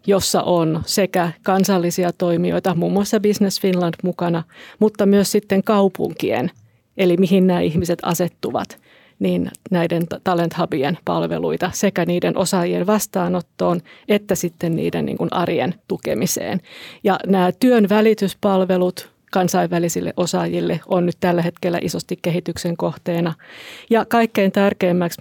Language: Finnish